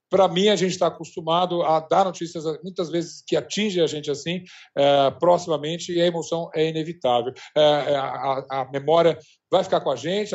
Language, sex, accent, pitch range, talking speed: Portuguese, male, Brazilian, 155-200 Hz, 190 wpm